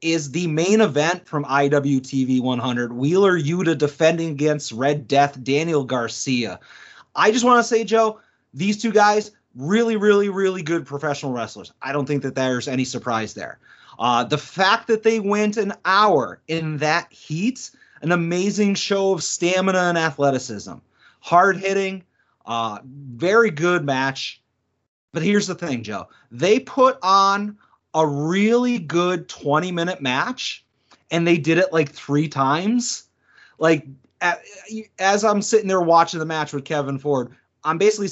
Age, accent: 30-49, American